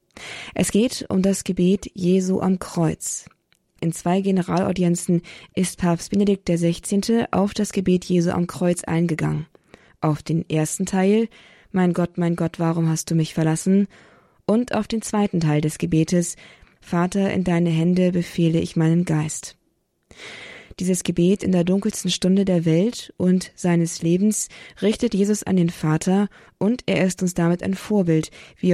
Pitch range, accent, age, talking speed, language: 170-190 Hz, German, 20-39, 155 wpm, German